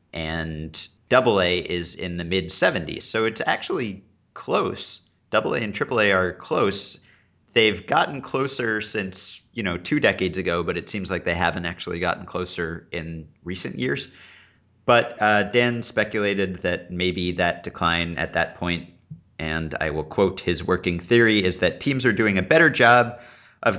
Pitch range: 90-115 Hz